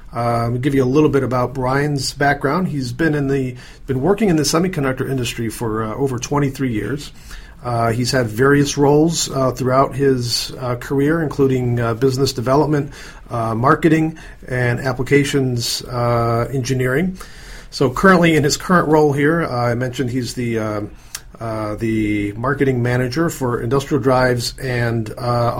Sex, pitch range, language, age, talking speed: male, 120-145 Hz, English, 40-59, 155 wpm